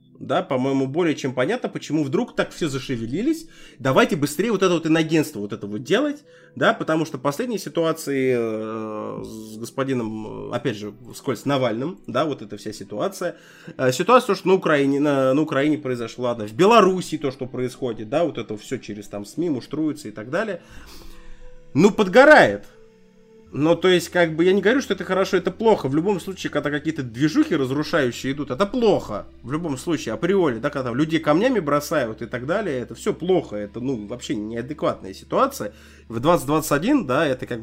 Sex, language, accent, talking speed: male, Russian, native, 175 wpm